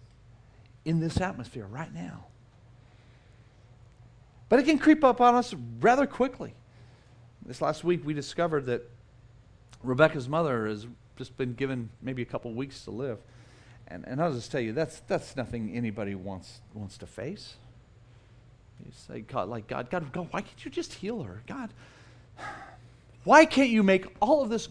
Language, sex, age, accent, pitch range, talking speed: English, male, 40-59, American, 120-185 Hz, 160 wpm